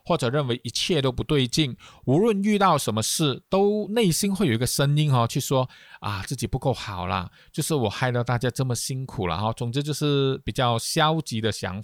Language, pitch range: Chinese, 110-150 Hz